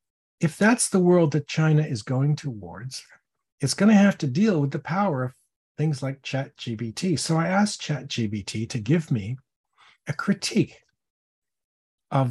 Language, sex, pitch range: English, male, 120-170 Hz